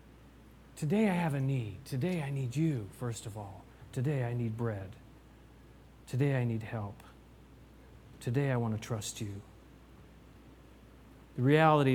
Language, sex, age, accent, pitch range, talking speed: English, male, 40-59, American, 115-185 Hz, 140 wpm